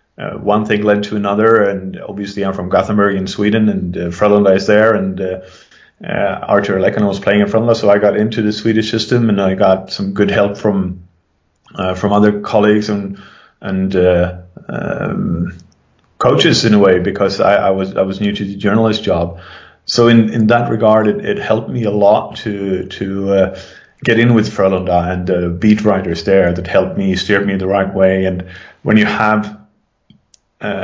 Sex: male